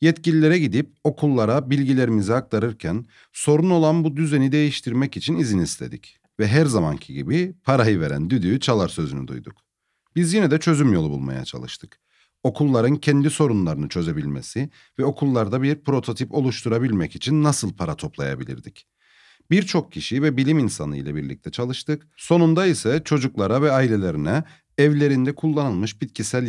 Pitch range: 105-150 Hz